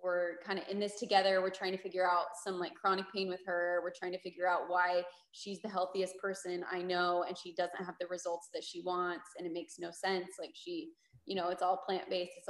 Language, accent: English, American